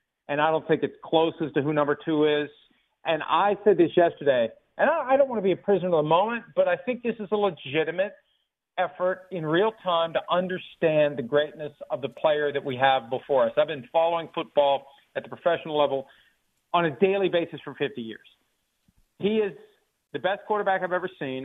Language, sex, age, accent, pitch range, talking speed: English, male, 50-69, American, 145-185 Hz, 205 wpm